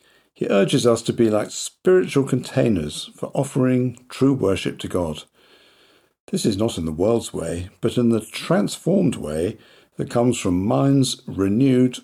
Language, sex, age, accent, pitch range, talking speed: English, male, 50-69, British, 90-130 Hz, 155 wpm